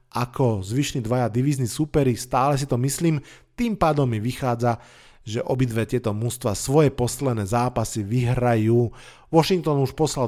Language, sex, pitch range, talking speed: Slovak, male, 120-145 Hz, 140 wpm